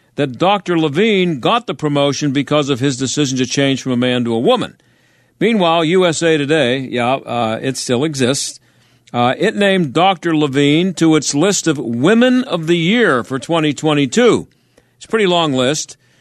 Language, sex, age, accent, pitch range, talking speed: English, male, 50-69, American, 130-175 Hz, 170 wpm